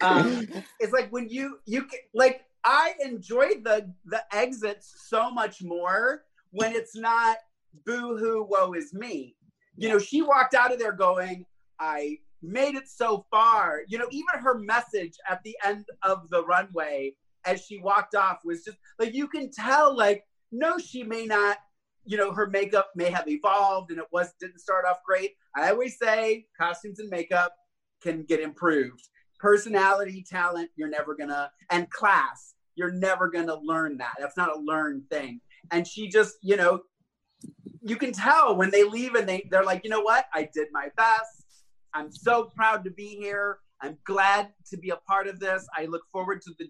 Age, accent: 30-49, American